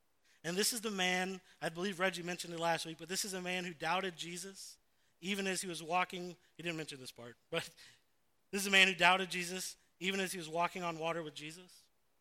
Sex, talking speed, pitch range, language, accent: male, 230 wpm, 145-180 Hz, English, American